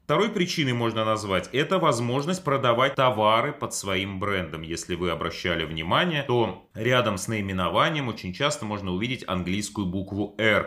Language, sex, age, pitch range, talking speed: Russian, male, 30-49, 90-120 Hz, 145 wpm